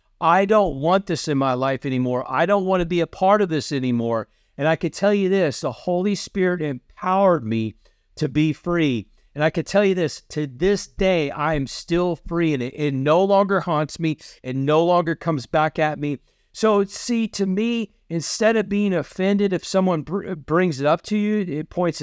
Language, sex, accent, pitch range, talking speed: English, male, American, 150-195 Hz, 205 wpm